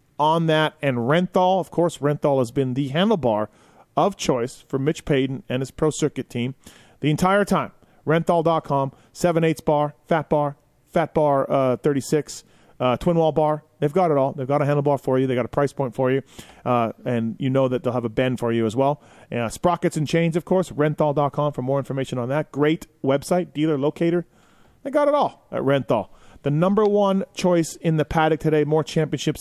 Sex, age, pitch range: male, 30-49, 135-170 Hz